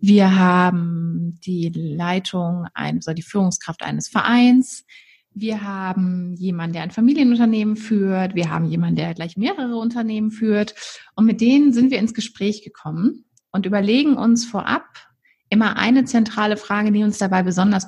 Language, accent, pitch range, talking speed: German, German, 185-230 Hz, 150 wpm